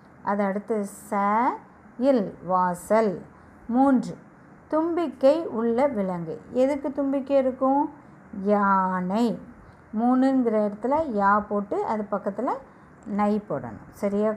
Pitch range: 205-265 Hz